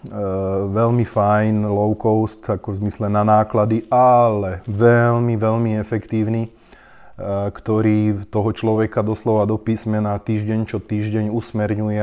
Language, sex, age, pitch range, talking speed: Slovak, male, 30-49, 105-115 Hz, 125 wpm